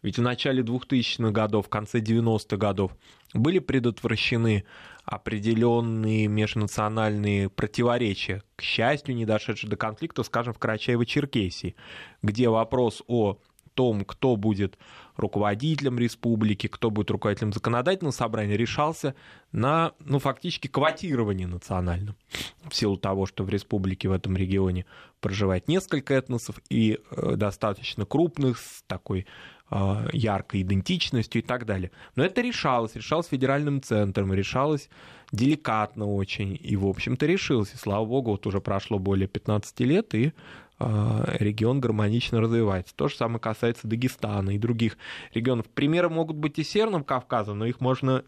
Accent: native